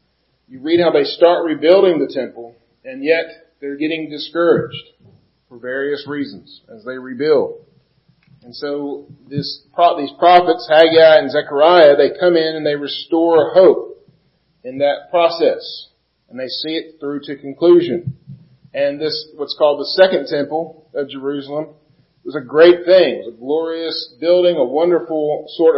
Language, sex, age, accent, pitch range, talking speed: English, male, 40-59, American, 130-170 Hz, 150 wpm